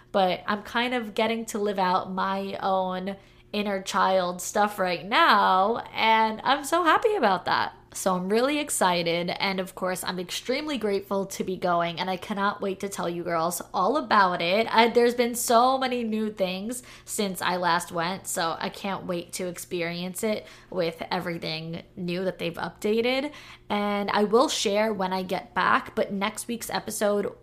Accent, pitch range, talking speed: American, 180-220 Hz, 175 wpm